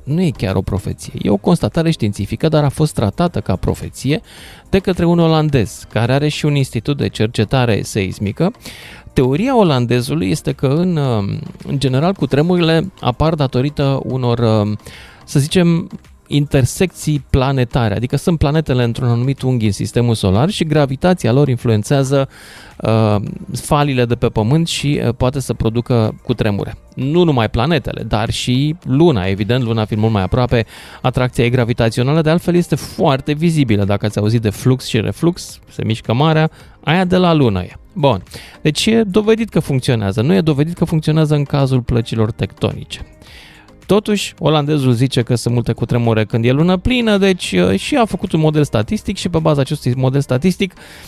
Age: 20-39